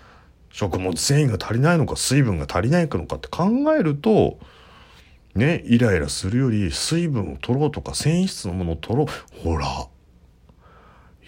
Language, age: Japanese, 40-59